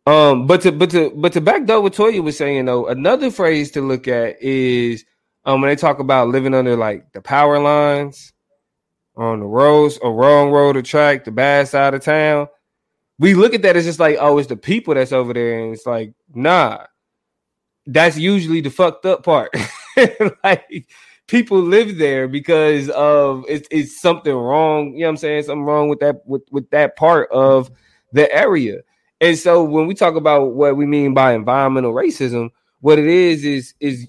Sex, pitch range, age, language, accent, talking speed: male, 135-175 Hz, 20-39, English, American, 195 wpm